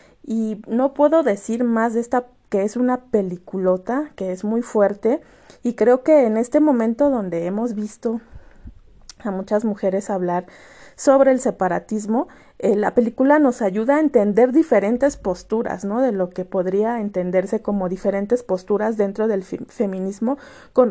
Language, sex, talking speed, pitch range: Spanish, female, 150 wpm, 200-260 Hz